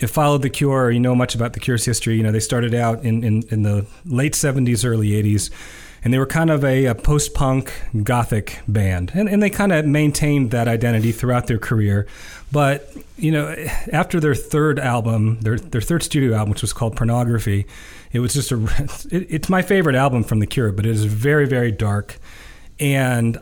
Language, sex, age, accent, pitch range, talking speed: English, male, 40-59, American, 110-145 Hz, 205 wpm